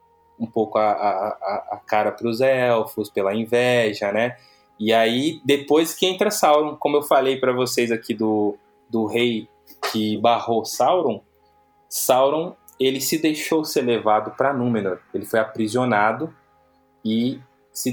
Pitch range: 115-160 Hz